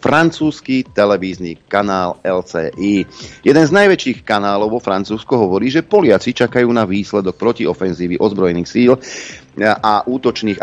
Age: 40-59